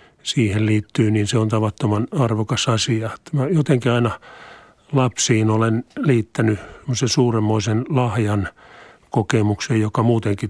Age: 50-69